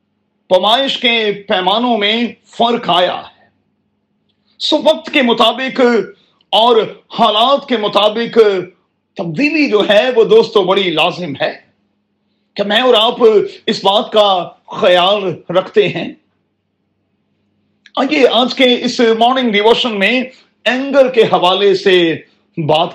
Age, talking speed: 40-59, 115 wpm